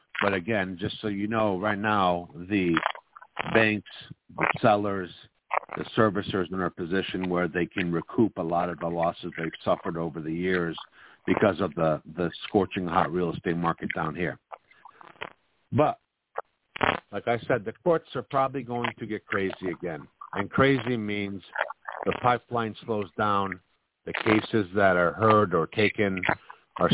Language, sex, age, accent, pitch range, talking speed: English, male, 60-79, American, 90-110 Hz, 160 wpm